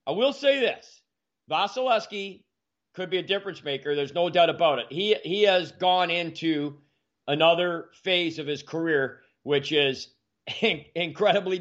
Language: English